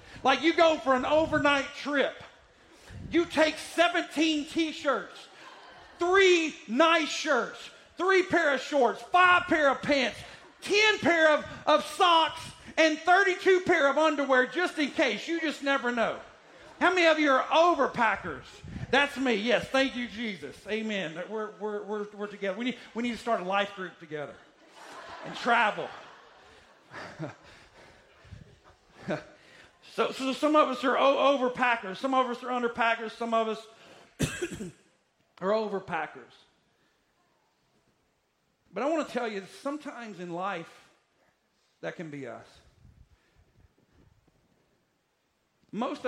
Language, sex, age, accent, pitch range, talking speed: English, male, 40-59, American, 220-300 Hz, 135 wpm